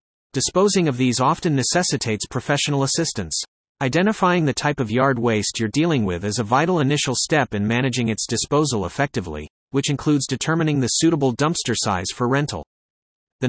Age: 30-49